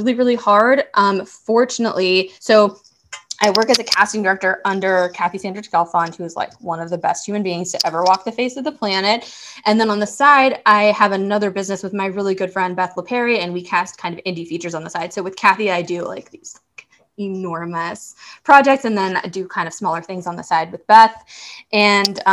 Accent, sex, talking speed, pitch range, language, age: American, female, 225 wpm, 180-210 Hz, English, 20-39